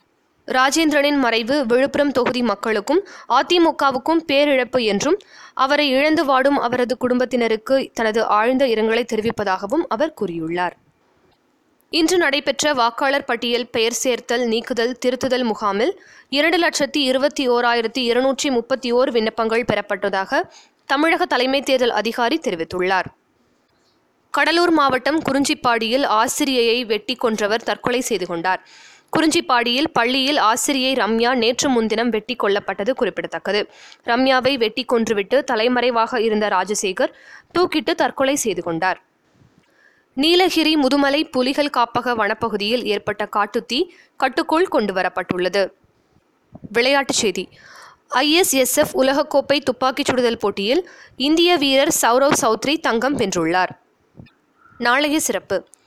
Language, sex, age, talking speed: Tamil, female, 20-39, 100 wpm